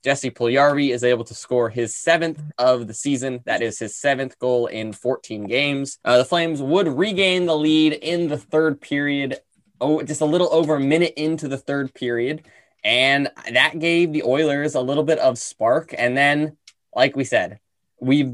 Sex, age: male, 10-29